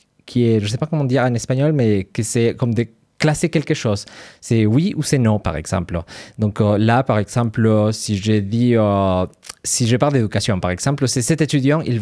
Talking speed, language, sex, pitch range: 200 wpm, French, male, 105-140 Hz